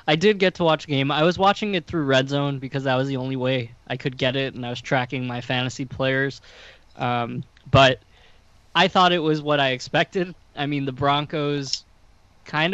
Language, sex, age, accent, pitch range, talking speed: English, male, 20-39, American, 125-150 Hz, 210 wpm